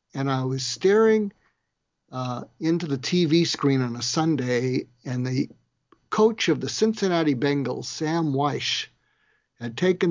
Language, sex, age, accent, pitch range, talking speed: English, male, 60-79, American, 125-165 Hz, 135 wpm